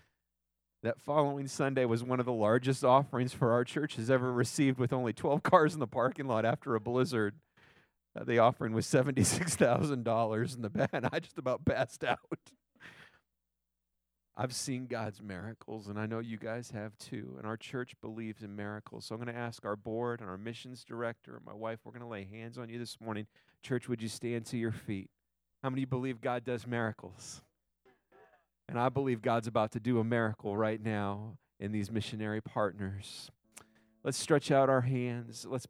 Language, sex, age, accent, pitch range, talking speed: English, male, 40-59, American, 110-135 Hz, 190 wpm